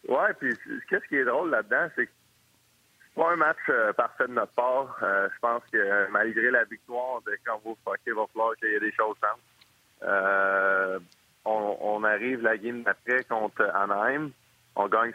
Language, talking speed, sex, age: French, 175 wpm, male, 30-49